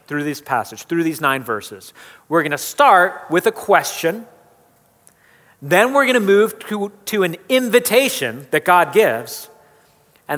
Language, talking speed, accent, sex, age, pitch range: English, 155 wpm, American, male, 40-59, 150-210 Hz